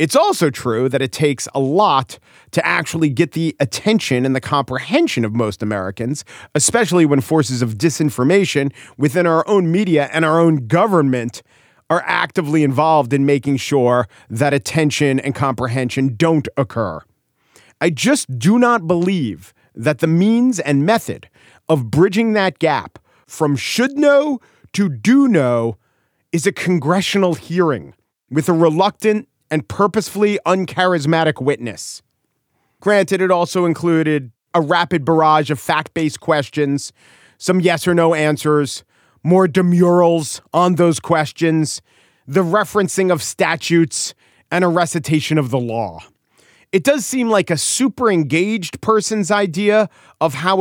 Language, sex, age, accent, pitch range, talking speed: English, male, 40-59, American, 140-185 Hz, 140 wpm